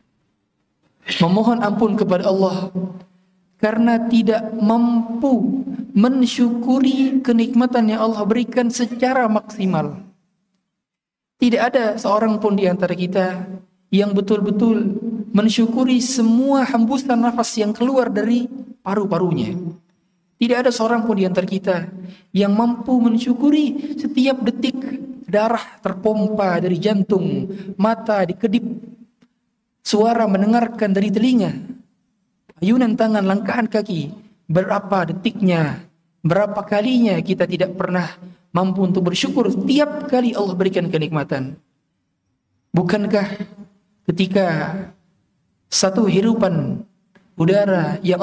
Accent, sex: native, male